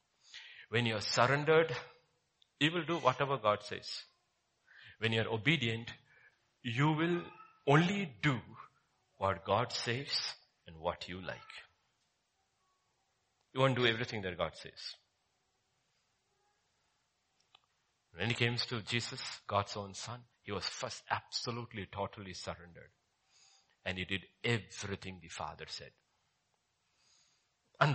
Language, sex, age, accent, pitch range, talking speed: English, male, 50-69, Indian, 100-135 Hz, 115 wpm